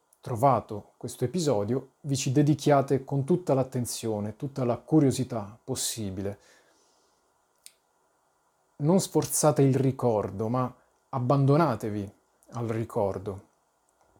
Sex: male